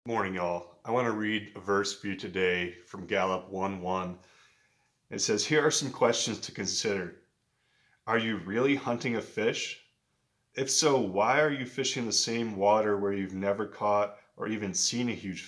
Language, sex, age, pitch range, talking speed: English, male, 30-49, 100-125 Hz, 180 wpm